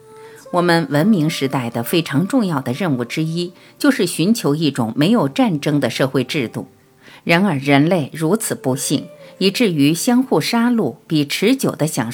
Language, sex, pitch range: Chinese, female, 130-205 Hz